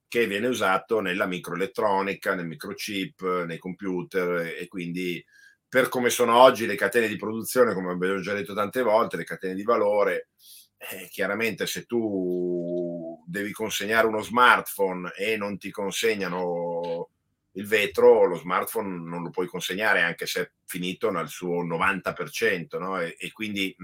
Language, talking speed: Italian, 150 wpm